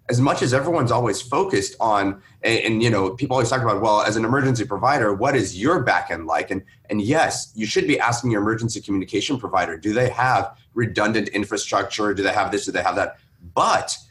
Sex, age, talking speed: male, 30-49, 215 wpm